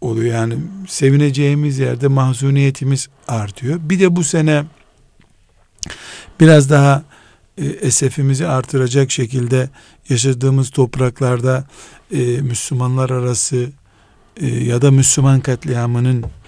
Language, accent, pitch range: Turkish, native, 115-140 Hz